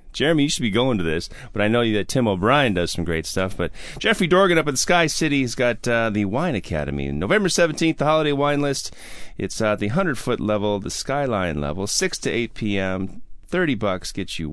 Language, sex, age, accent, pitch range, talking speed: English, male, 30-49, American, 90-125 Hz, 215 wpm